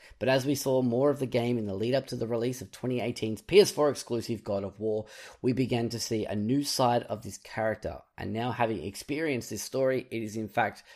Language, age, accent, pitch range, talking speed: English, 10-29, Australian, 105-125 Hz, 220 wpm